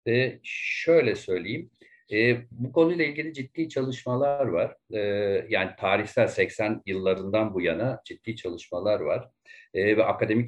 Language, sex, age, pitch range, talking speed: Turkish, male, 50-69, 110-150 Hz, 130 wpm